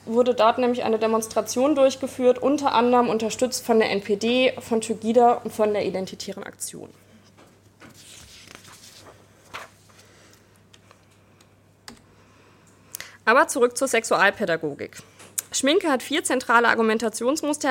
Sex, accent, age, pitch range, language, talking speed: female, German, 20-39, 200-255 Hz, German, 95 wpm